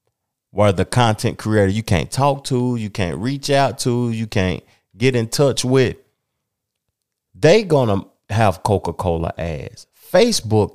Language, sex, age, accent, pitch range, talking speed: English, male, 30-49, American, 90-130 Hz, 140 wpm